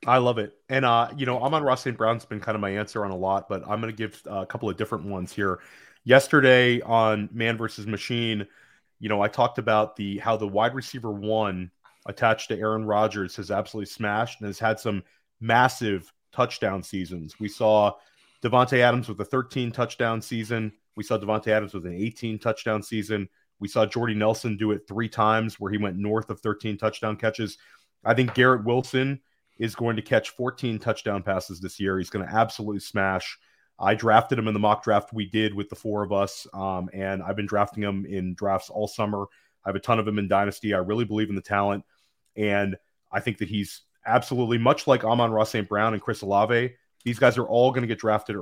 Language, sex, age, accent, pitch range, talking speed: English, male, 30-49, American, 100-115 Hz, 215 wpm